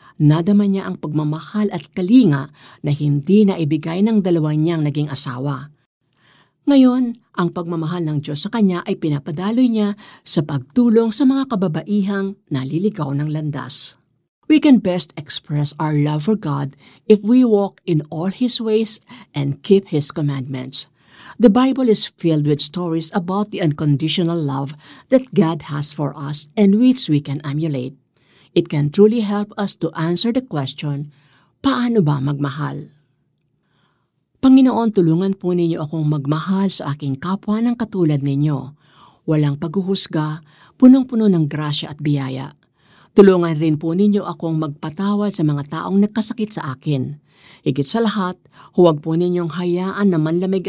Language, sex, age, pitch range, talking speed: Filipino, female, 50-69, 145-200 Hz, 150 wpm